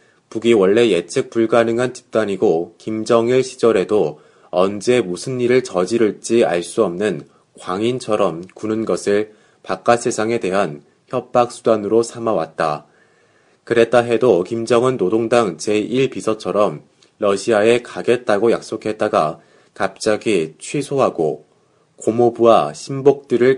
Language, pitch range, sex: Korean, 100-120 Hz, male